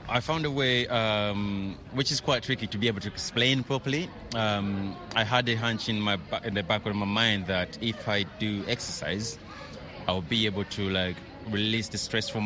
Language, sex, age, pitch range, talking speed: English, male, 30-49, 90-105 Hz, 205 wpm